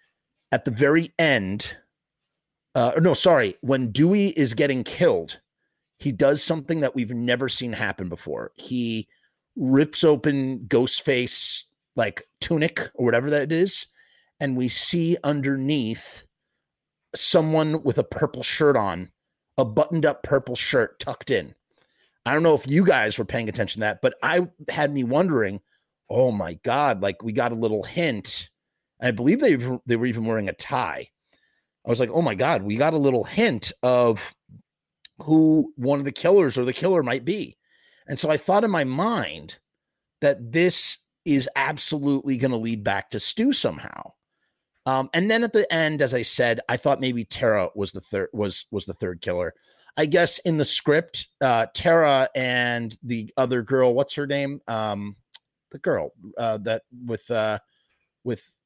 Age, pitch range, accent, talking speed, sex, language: 30-49, 115-155 Hz, American, 170 wpm, male, English